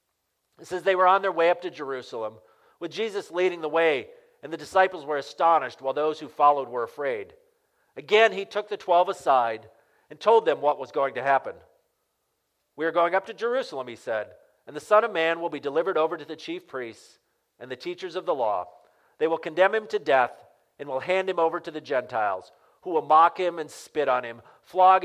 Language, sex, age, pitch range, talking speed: English, male, 40-59, 145-210 Hz, 215 wpm